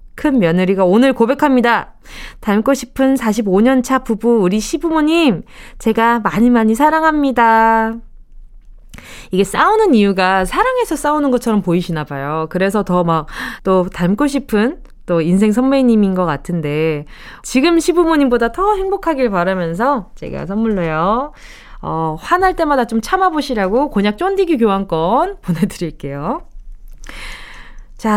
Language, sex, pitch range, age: Korean, female, 185-280 Hz, 20-39